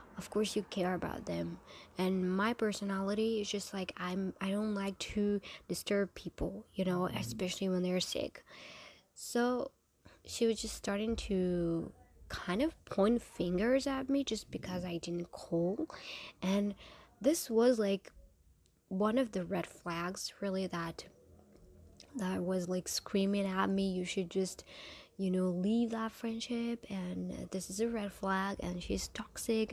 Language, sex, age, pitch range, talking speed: English, female, 20-39, 185-225 Hz, 155 wpm